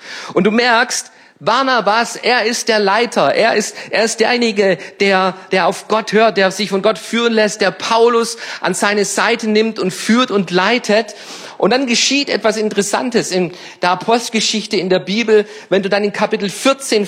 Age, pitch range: 50-69, 185-230 Hz